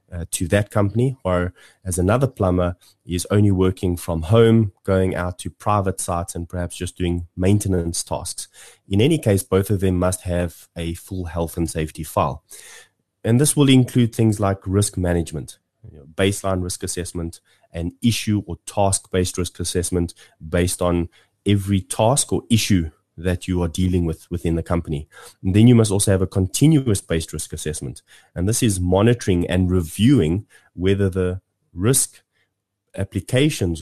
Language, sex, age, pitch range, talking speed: English, male, 20-39, 85-105 Hz, 160 wpm